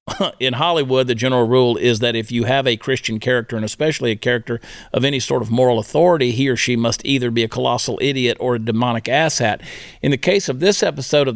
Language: English